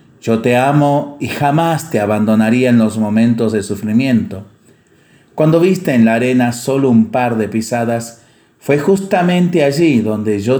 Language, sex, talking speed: Spanish, male, 155 wpm